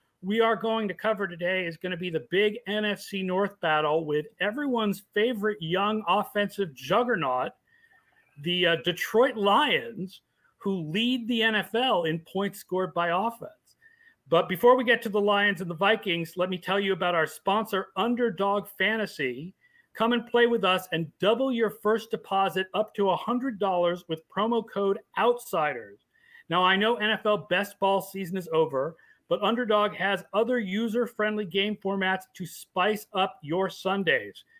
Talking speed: 160 wpm